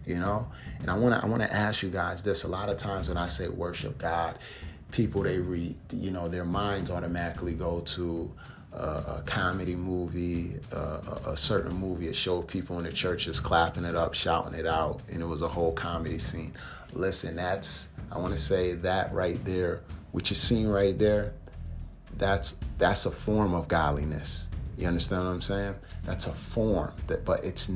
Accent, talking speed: American, 200 wpm